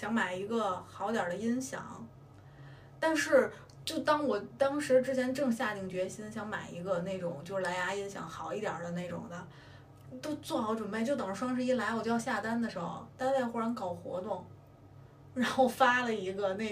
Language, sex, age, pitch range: Chinese, female, 20-39, 185-255 Hz